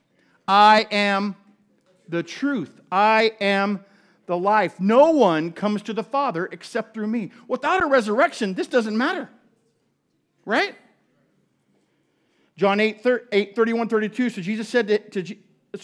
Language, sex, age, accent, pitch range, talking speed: English, male, 50-69, American, 190-240 Hz, 110 wpm